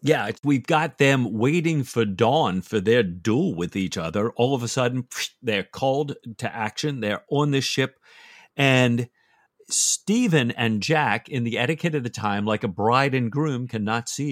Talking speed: 175 wpm